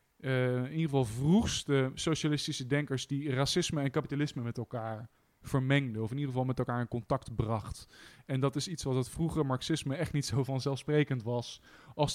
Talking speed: 185 wpm